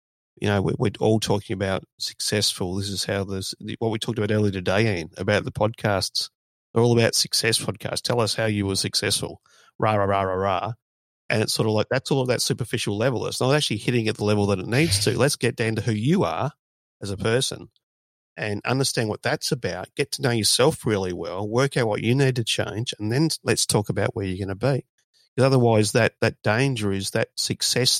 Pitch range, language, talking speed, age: 100-120 Hz, English, 225 wpm, 30-49